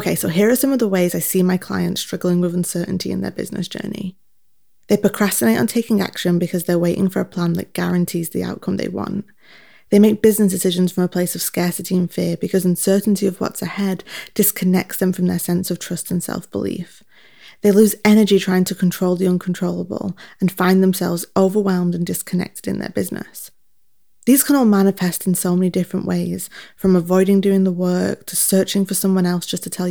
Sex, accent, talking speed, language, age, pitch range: female, British, 200 wpm, English, 20-39, 180-200 Hz